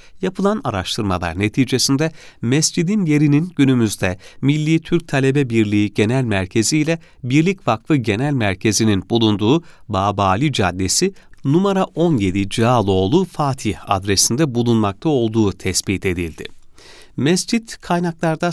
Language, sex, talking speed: Turkish, male, 100 wpm